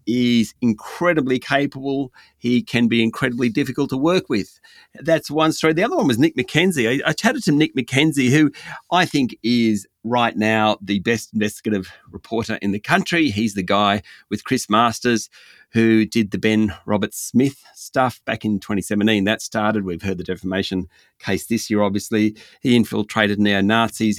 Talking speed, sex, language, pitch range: 170 wpm, male, English, 105-130 Hz